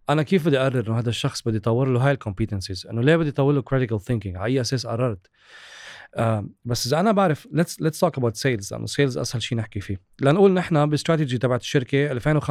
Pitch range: 120-165 Hz